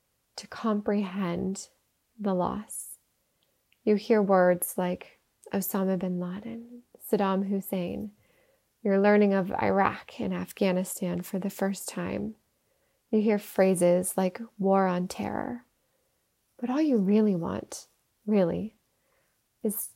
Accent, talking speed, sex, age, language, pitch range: American, 110 wpm, female, 20-39, English, 185-220 Hz